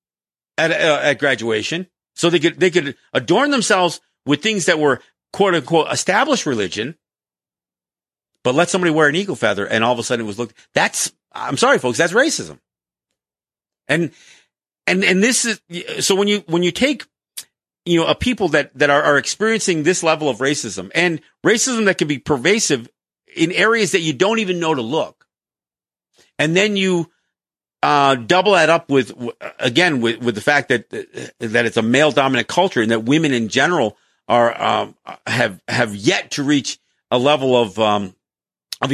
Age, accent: 50-69, American